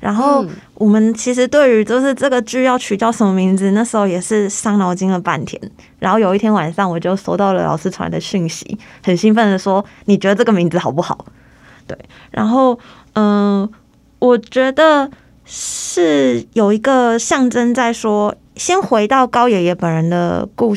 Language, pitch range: Chinese, 195-235 Hz